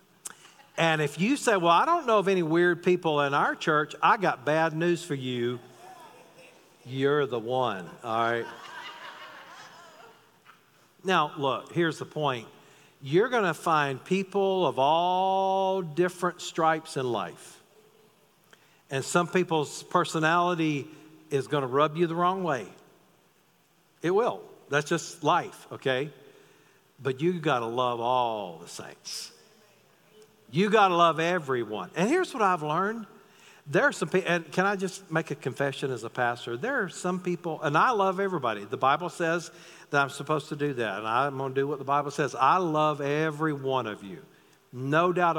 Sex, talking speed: male, 165 wpm